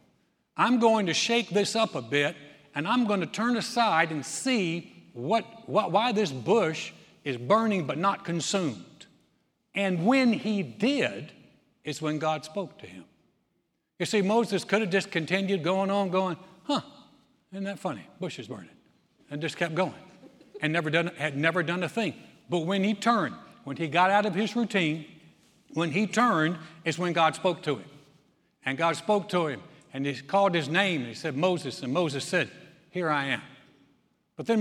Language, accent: English, American